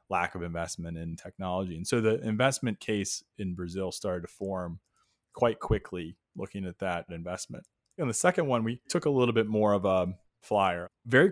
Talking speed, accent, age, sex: 185 wpm, American, 20-39, male